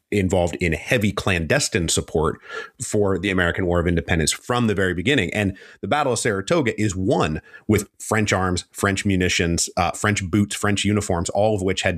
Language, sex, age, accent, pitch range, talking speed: English, male, 30-49, American, 90-110 Hz, 180 wpm